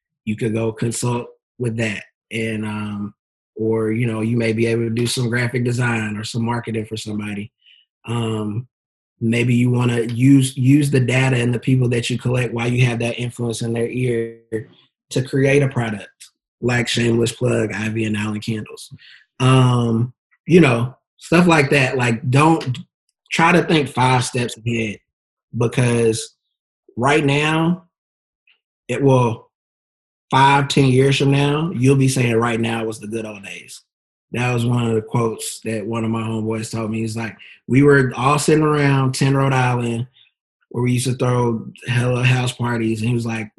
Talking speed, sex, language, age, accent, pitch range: 175 wpm, male, English, 20-39, American, 115-130 Hz